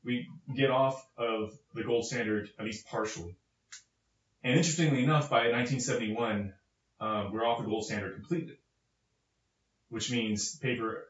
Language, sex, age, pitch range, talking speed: English, male, 20-39, 105-135 Hz, 135 wpm